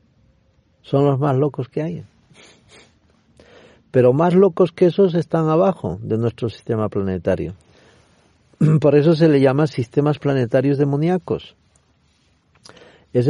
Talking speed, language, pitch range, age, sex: 115 wpm, Spanish, 110-155 Hz, 50-69, male